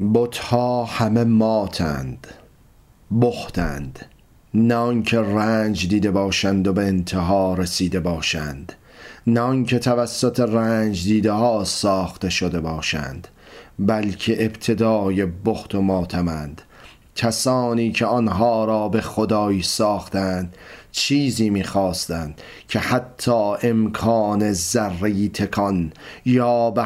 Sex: male